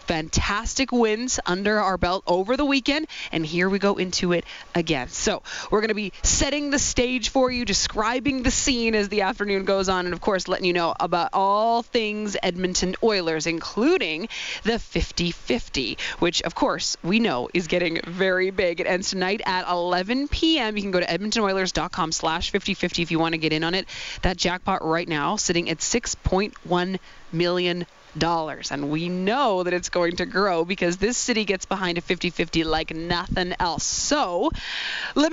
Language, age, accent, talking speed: English, 20-39, American, 180 wpm